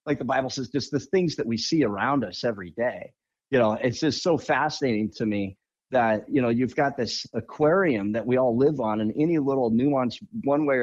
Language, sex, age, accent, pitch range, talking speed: English, male, 50-69, American, 125-165 Hz, 220 wpm